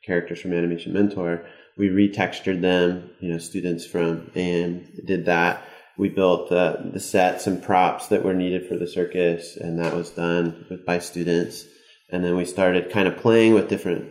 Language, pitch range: English, 90-120 Hz